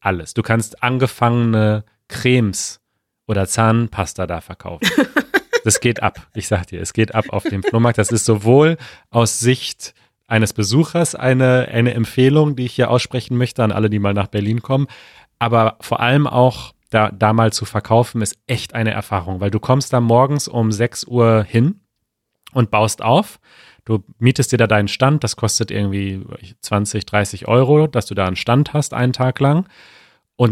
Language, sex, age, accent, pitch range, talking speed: German, male, 30-49, German, 110-130 Hz, 175 wpm